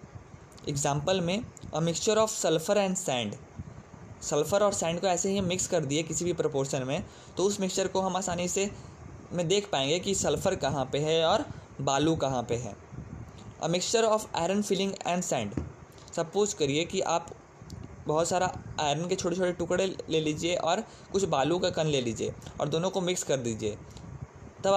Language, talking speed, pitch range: Hindi, 180 wpm, 140-185 Hz